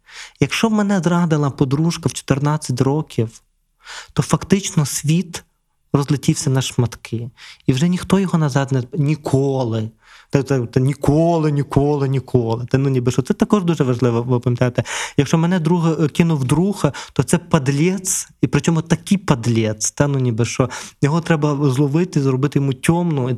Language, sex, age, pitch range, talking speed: Ukrainian, male, 20-39, 125-155 Hz, 150 wpm